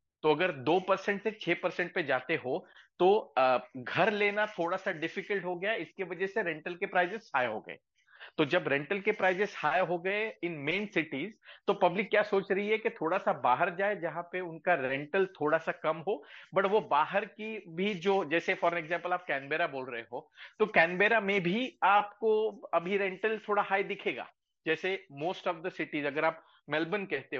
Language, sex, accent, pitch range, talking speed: Hindi, male, native, 165-205 Hz, 190 wpm